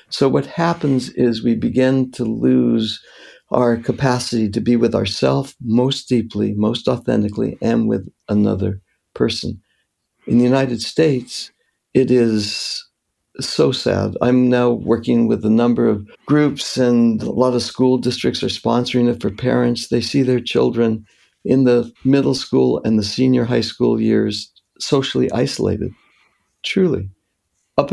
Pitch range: 105-130 Hz